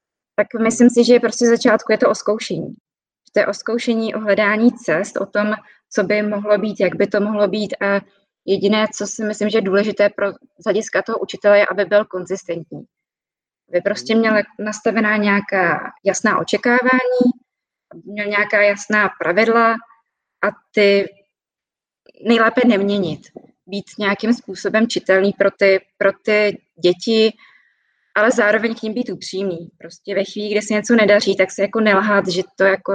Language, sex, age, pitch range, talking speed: Czech, female, 20-39, 195-215 Hz, 160 wpm